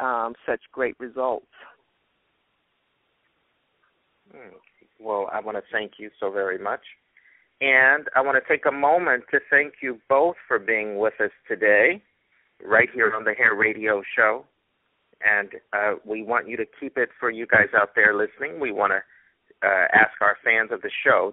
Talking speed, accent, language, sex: 170 wpm, American, English, male